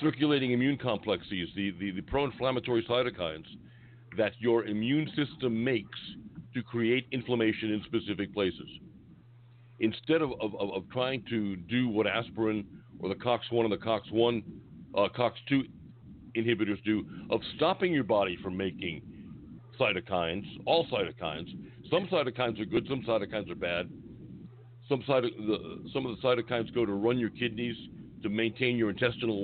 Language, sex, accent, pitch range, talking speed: English, male, American, 105-125 Hz, 145 wpm